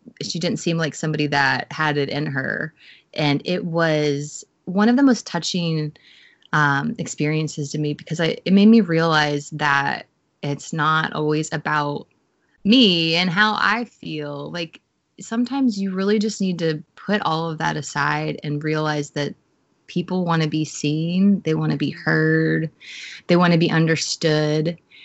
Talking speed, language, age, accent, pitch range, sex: 165 wpm, English, 20-39, American, 150-175 Hz, female